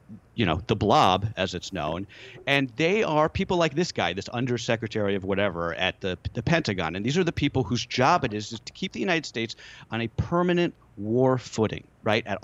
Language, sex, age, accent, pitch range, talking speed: English, male, 40-59, American, 105-140 Hz, 210 wpm